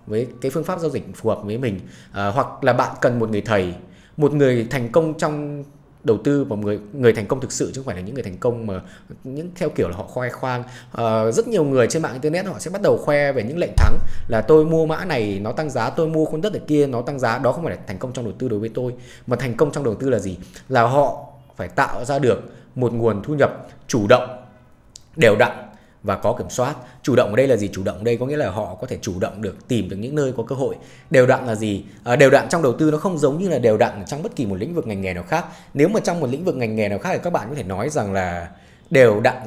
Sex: male